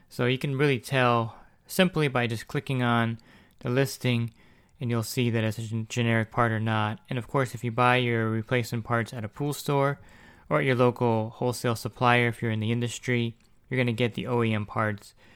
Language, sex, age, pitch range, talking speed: English, male, 20-39, 110-125 Hz, 205 wpm